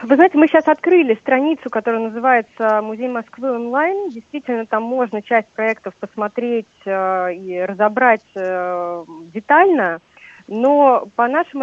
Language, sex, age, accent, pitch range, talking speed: Russian, female, 30-49, native, 185-235 Hz, 120 wpm